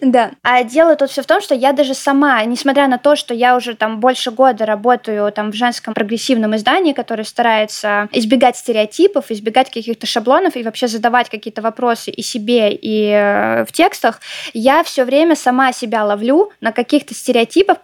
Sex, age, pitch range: female, 20-39, 230-270 Hz